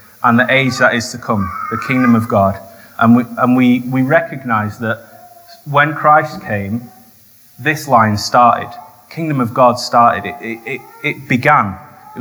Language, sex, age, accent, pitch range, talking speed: English, male, 30-49, British, 105-130 Hz, 160 wpm